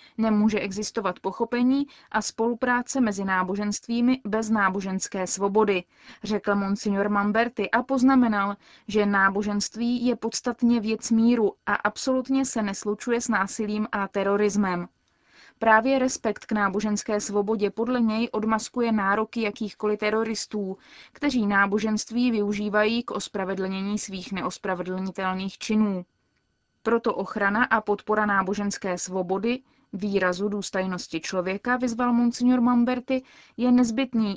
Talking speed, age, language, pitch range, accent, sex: 110 wpm, 20-39, Czech, 200-235 Hz, native, female